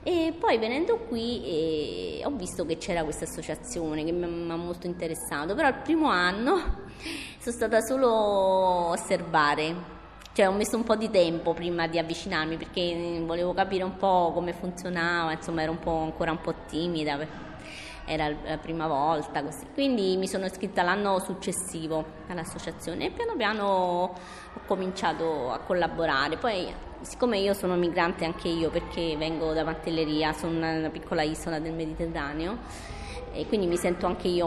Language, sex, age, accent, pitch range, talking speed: Italian, female, 20-39, native, 160-190 Hz, 155 wpm